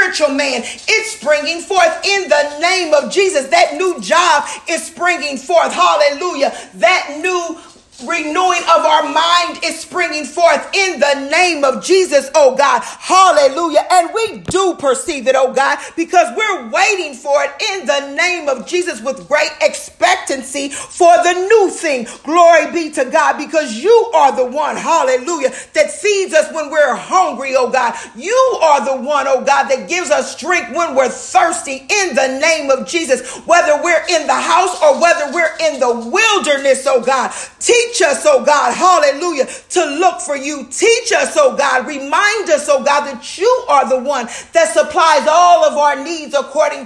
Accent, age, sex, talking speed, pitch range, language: American, 40-59, female, 175 wpm, 280-345 Hz, English